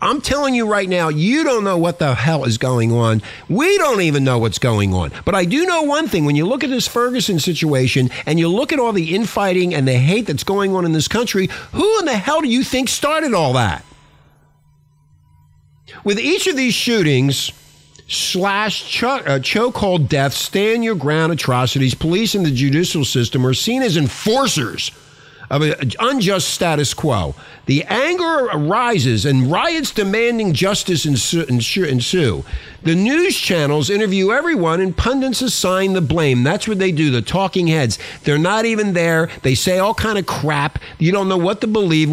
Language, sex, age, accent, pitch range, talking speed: English, male, 50-69, American, 145-205 Hz, 180 wpm